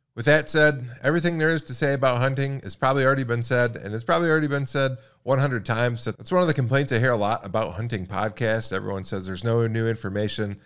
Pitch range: 105-135 Hz